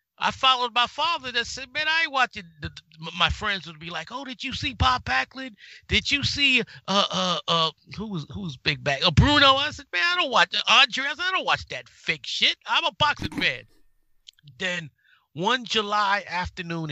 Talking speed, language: 210 wpm, English